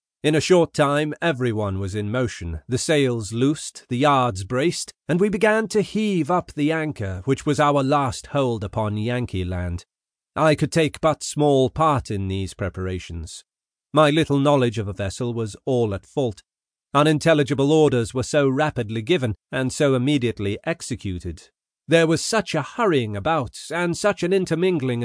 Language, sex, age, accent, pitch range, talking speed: English, male, 40-59, British, 120-160 Hz, 165 wpm